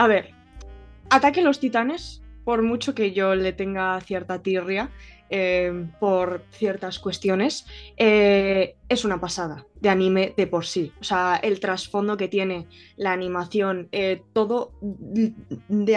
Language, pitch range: Spanish, 190-220 Hz